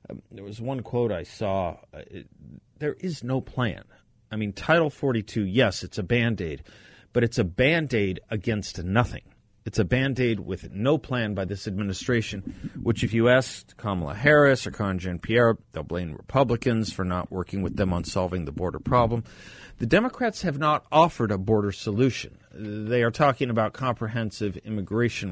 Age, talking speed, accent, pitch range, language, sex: 40-59, 170 wpm, American, 95-120 Hz, English, male